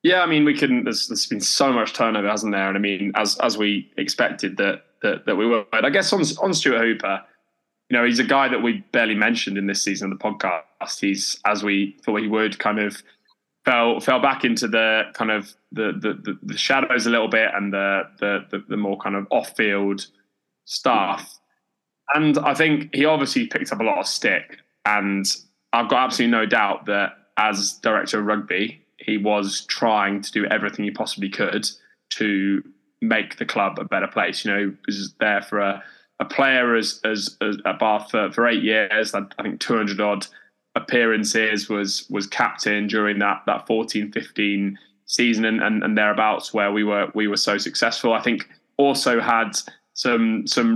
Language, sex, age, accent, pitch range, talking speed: English, male, 10-29, British, 100-115 Hz, 195 wpm